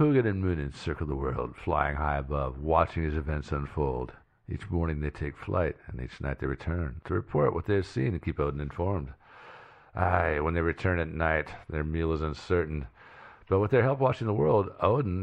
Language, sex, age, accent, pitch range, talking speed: English, male, 50-69, American, 80-100 Hz, 200 wpm